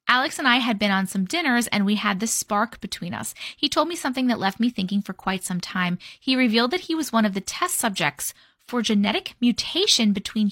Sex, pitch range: female, 200-275 Hz